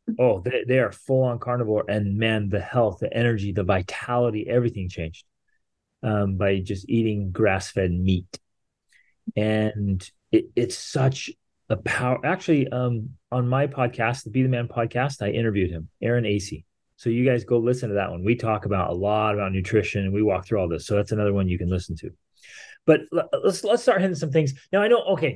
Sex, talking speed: male, 205 wpm